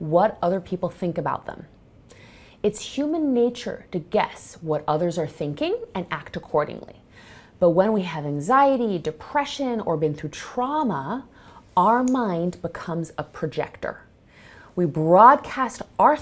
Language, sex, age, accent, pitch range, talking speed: English, female, 30-49, American, 155-235 Hz, 135 wpm